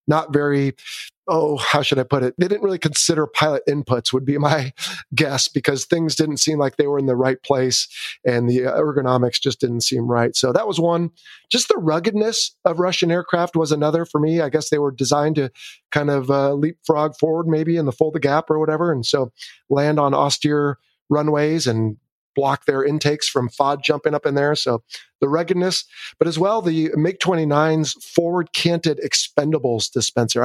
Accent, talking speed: American, 195 wpm